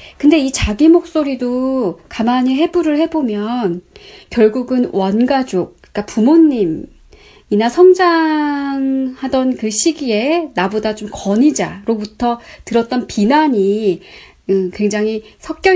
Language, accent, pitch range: Korean, native, 205-280 Hz